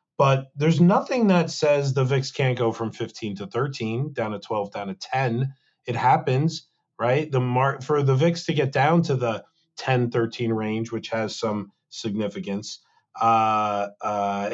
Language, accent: English, American